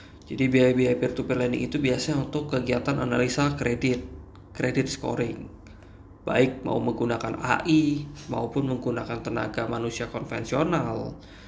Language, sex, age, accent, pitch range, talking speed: Indonesian, male, 20-39, native, 115-135 Hz, 110 wpm